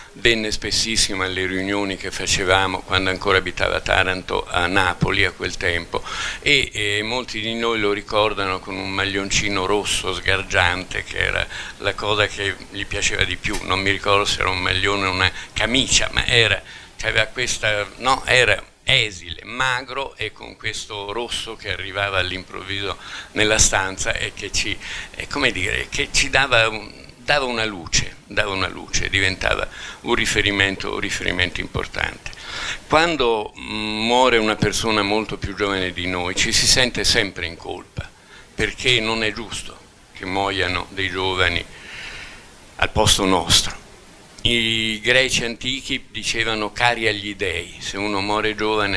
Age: 60-79